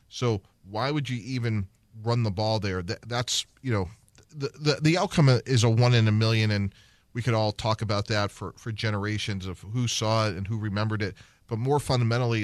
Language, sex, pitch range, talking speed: English, male, 105-120 Hz, 210 wpm